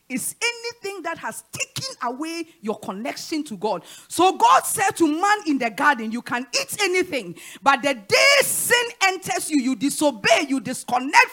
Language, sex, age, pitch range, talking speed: English, female, 40-59, 215-330 Hz, 170 wpm